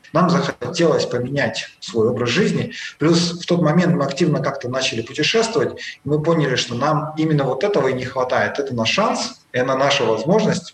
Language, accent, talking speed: Russian, native, 180 wpm